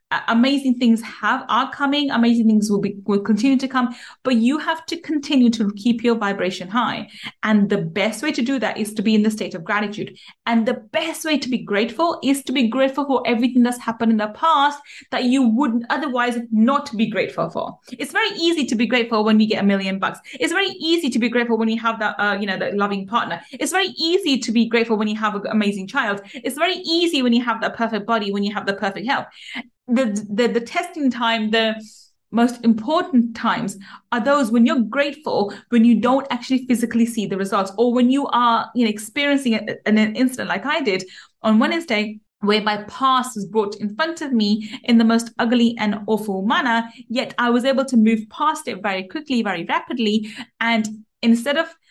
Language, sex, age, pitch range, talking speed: English, female, 30-49, 215-265 Hz, 215 wpm